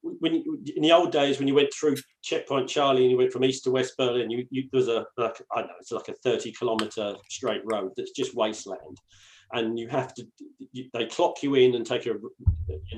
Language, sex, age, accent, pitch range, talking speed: English, male, 40-59, British, 110-150 Hz, 230 wpm